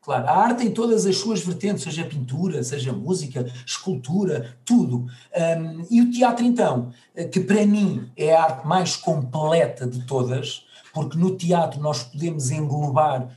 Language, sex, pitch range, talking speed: Portuguese, male, 145-210 Hz, 155 wpm